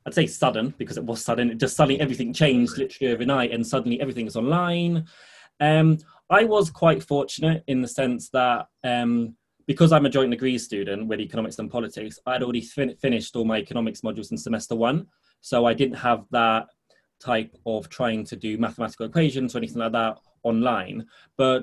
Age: 20-39